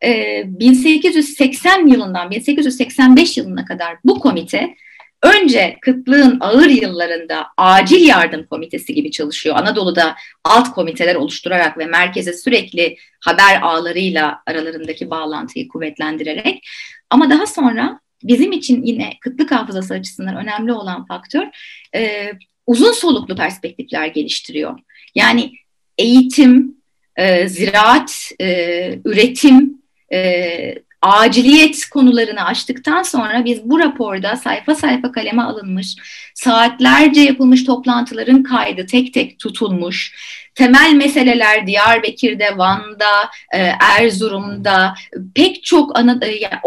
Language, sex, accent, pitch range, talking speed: Turkish, female, native, 190-285 Hz, 100 wpm